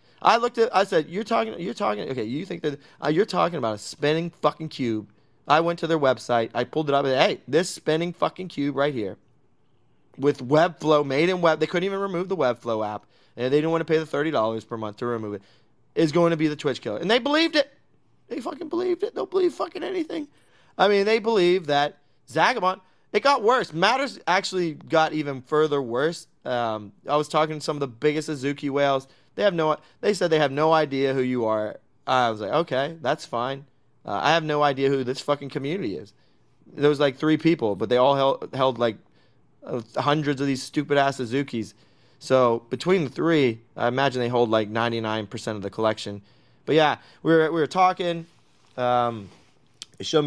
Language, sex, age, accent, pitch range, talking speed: English, male, 20-39, American, 125-165 Hz, 210 wpm